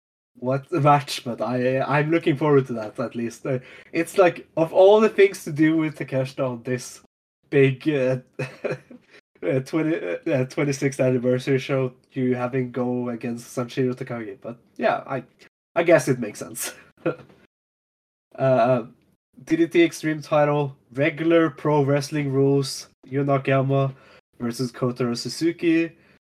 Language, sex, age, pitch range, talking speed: English, male, 20-39, 125-150 Hz, 140 wpm